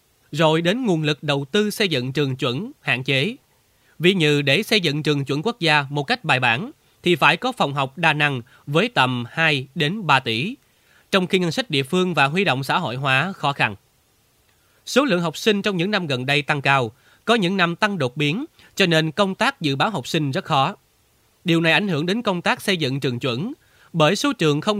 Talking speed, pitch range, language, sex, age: 225 wpm, 135-190 Hz, Vietnamese, male, 20-39